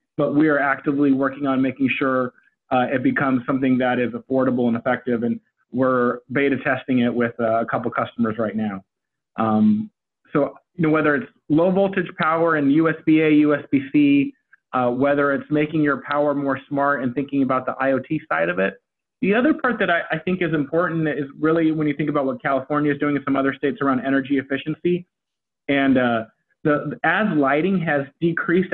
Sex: male